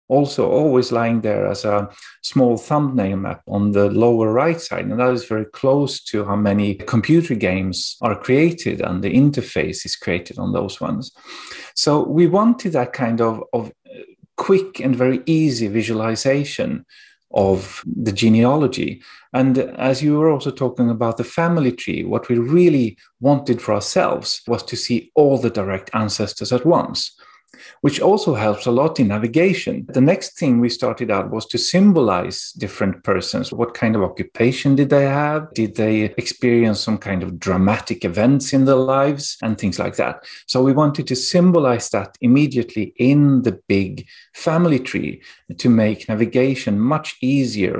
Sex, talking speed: male, 165 wpm